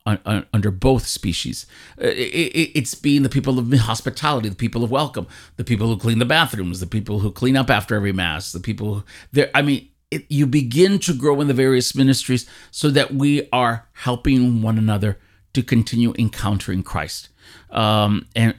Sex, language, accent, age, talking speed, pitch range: male, English, American, 40-59, 170 wpm, 105-125 Hz